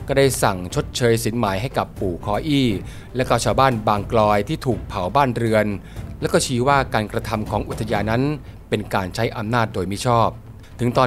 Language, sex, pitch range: Thai, male, 110-130 Hz